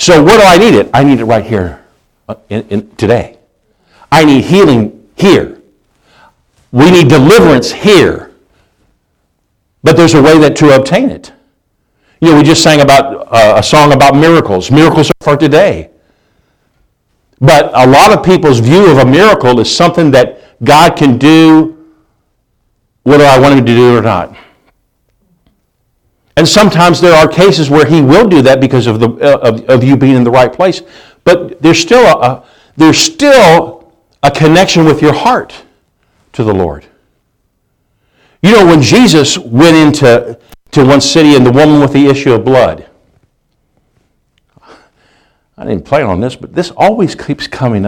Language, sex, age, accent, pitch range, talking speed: English, male, 50-69, American, 120-160 Hz, 165 wpm